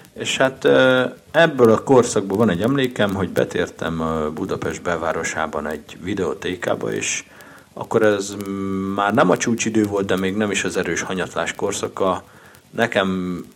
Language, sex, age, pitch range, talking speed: Hungarian, male, 50-69, 90-110 Hz, 140 wpm